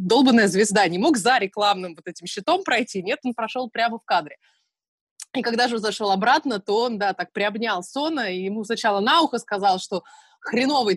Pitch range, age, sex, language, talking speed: 190-240 Hz, 20-39, female, Russian, 195 wpm